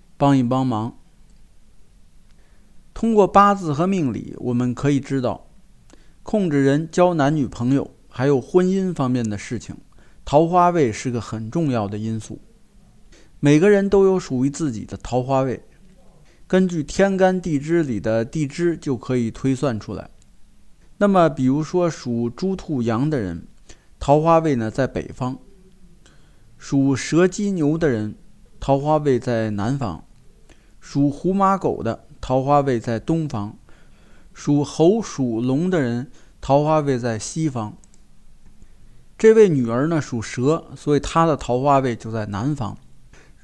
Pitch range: 120-160 Hz